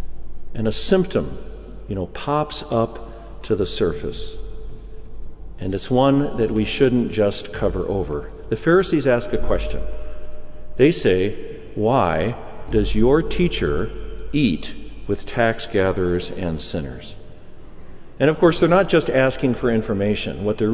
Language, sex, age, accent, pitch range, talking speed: English, male, 50-69, American, 90-130 Hz, 135 wpm